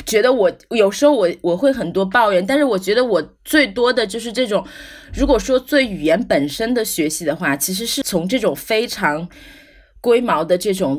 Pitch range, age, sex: 165-240 Hz, 20-39, female